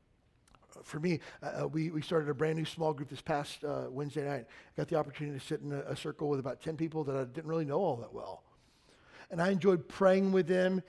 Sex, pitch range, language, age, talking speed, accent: male, 155-190 Hz, English, 40-59, 240 wpm, American